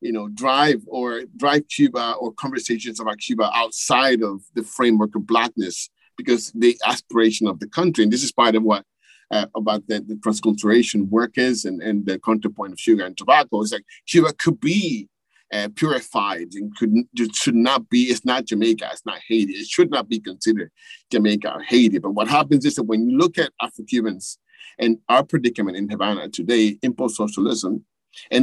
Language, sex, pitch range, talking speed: English, male, 110-145 Hz, 185 wpm